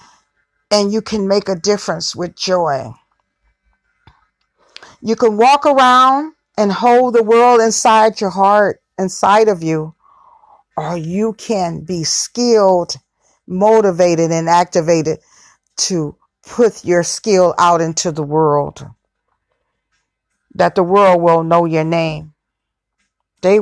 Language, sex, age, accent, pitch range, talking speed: English, female, 40-59, American, 170-235 Hz, 115 wpm